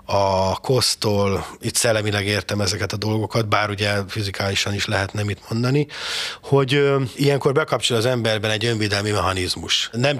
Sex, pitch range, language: male, 105-120 Hz, Hungarian